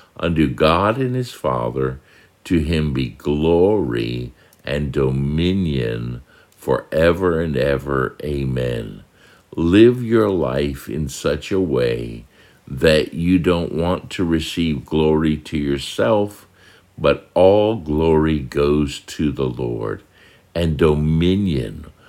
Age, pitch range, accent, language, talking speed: 60-79, 70-90 Hz, American, English, 110 wpm